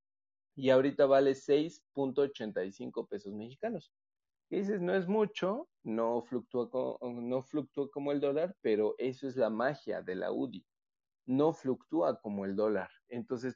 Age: 40-59